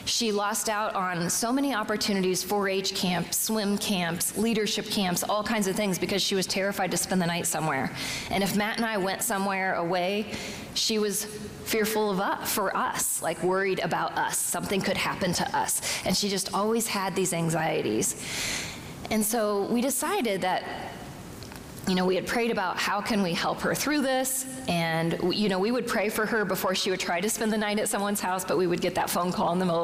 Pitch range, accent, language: 180-220 Hz, American, English